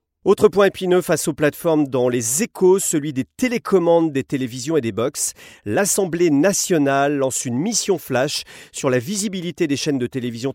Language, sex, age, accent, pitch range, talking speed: French, male, 40-59, French, 120-175 Hz, 170 wpm